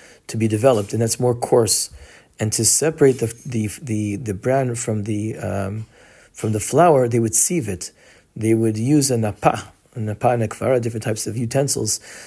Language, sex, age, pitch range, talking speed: English, male, 40-59, 105-125 Hz, 175 wpm